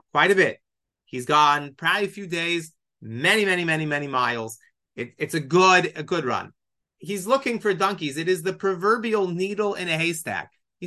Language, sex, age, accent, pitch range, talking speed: English, male, 30-49, American, 150-205 Hz, 190 wpm